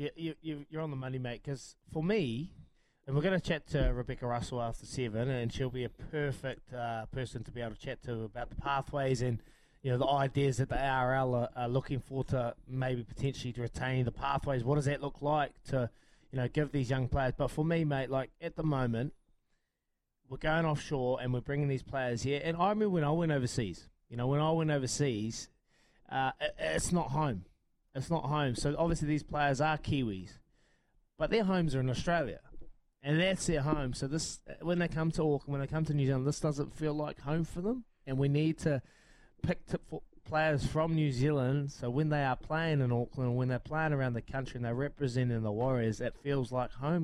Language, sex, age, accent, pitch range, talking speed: English, male, 20-39, Australian, 125-155 Hz, 220 wpm